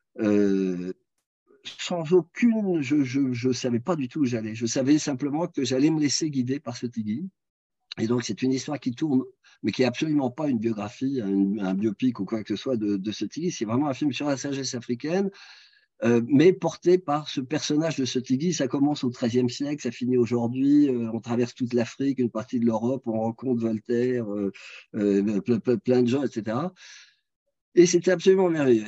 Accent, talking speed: French, 195 wpm